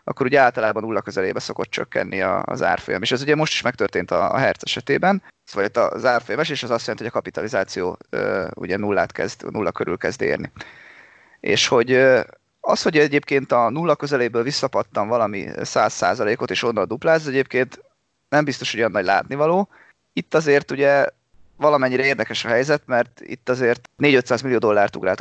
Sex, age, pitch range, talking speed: male, 30-49, 120-145 Hz, 180 wpm